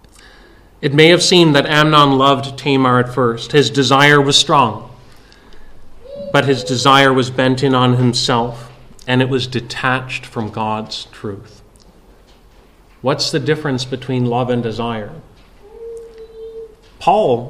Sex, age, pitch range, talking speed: male, 40-59, 120-140 Hz, 125 wpm